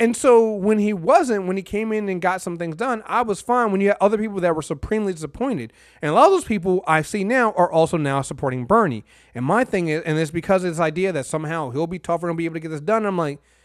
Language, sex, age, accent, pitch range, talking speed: English, male, 30-49, American, 125-185 Hz, 280 wpm